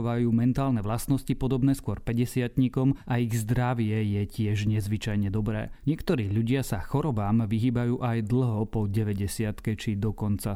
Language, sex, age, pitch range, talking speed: Slovak, male, 30-49, 110-125 Hz, 135 wpm